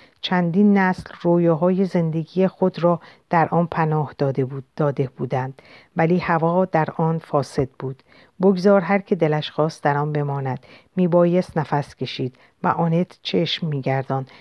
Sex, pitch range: female, 145-180 Hz